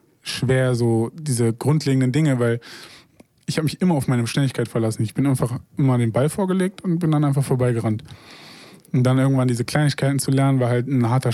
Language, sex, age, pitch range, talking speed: German, male, 20-39, 125-145 Hz, 195 wpm